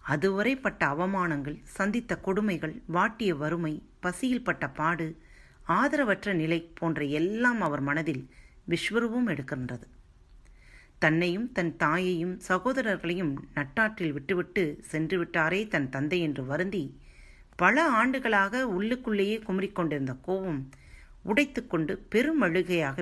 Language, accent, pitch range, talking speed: Tamil, native, 145-210 Hz, 95 wpm